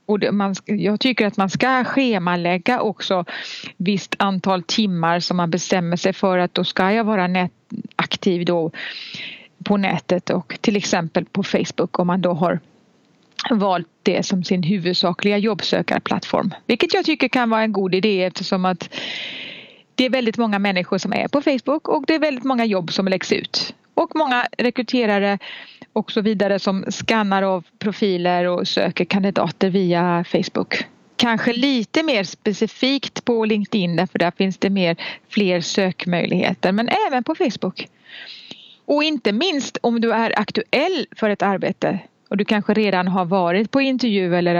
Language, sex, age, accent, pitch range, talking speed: Swedish, female, 30-49, native, 180-225 Hz, 165 wpm